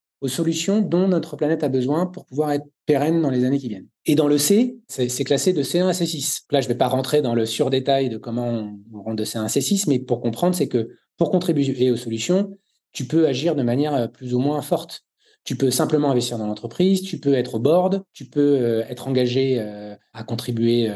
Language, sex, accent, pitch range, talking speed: French, male, French, 120-160 Hz, 230 wpm